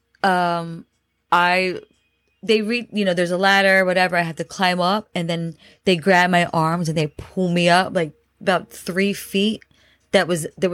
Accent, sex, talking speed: American, female, 185 wpm